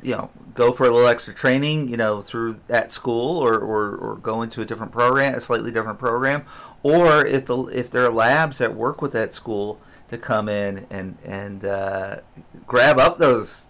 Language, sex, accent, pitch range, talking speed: English, male, American, 110-130 Hz, 200 wpm